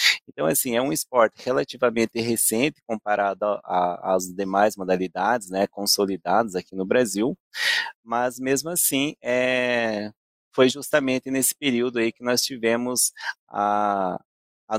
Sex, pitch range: male, 105-130 Hz